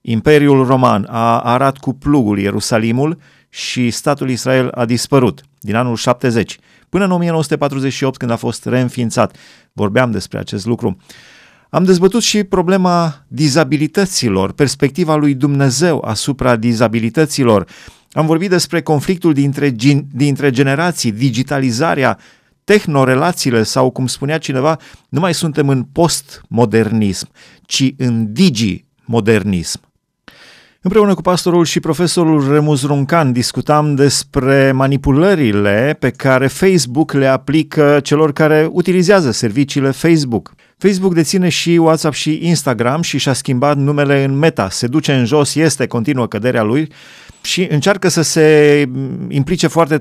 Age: 30-49